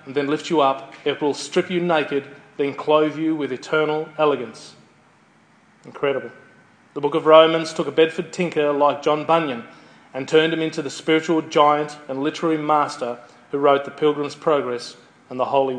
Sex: male